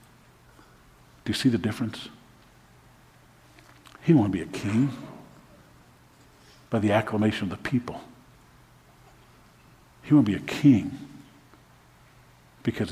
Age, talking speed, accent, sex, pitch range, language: 50-69, 100 wpm, American, male, 105-125 Hz, English